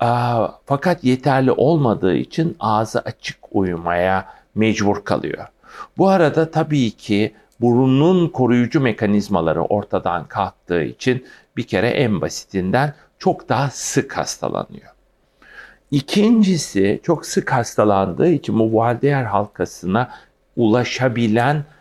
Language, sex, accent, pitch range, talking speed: Turkish, male, native, 105-140 Hz, 100 wpm